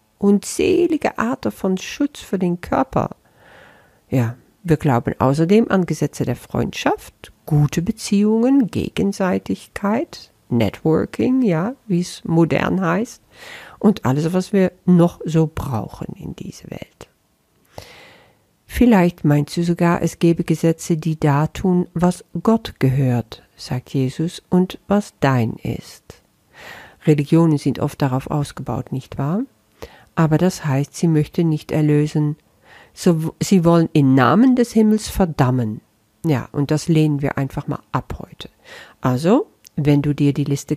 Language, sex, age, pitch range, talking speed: German, female, 50-69, 145-195 Hz, 130 wpm